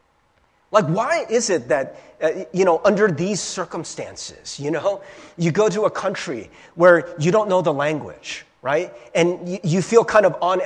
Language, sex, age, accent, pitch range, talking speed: English, male, 30-49, American, 160-215 Hz, 175 wpm